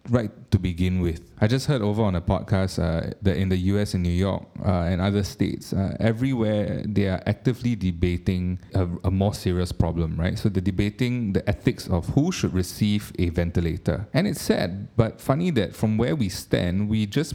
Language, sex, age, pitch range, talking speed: English, male, 20-39, 90-115 Hz, 200 wpm